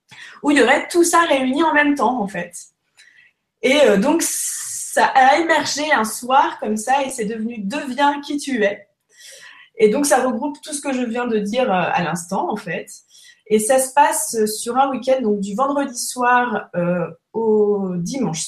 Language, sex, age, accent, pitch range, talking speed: French, female, 20-39, French, 205-275 Hz, 200 wpm